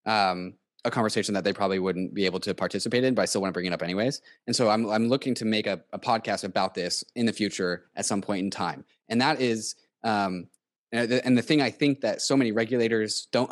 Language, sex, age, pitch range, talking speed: English, male, 20-39, 105-130 Hz, 255 wpm